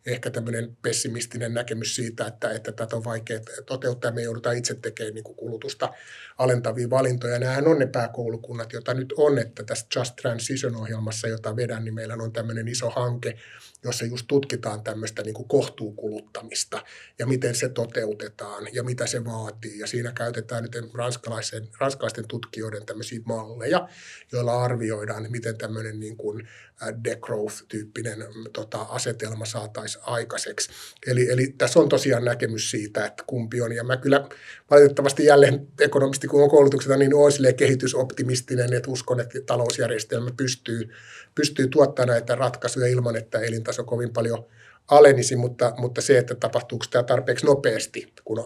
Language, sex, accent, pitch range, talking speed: Finnish, male, native, 115-130 Hz, 145 wpm